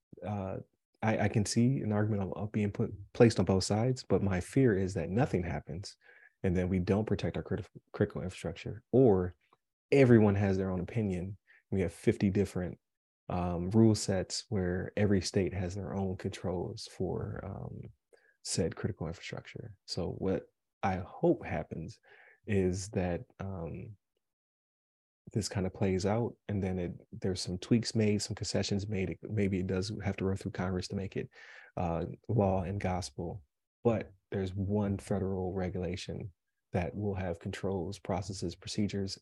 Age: 30-49